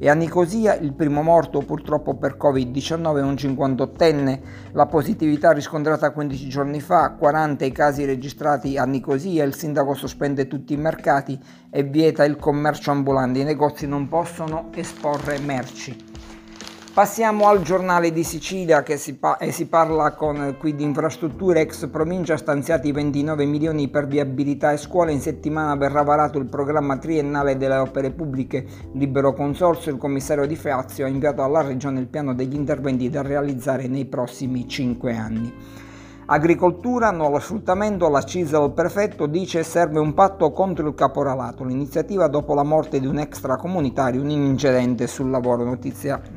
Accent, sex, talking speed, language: native, male, 160 wpm, Italian